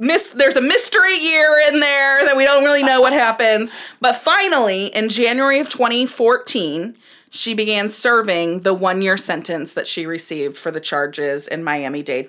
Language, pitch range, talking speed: English, 180-260 Hz, 160 wpm